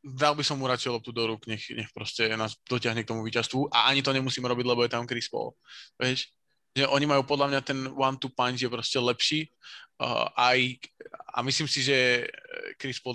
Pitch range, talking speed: 120-135 Hz, 200 wpm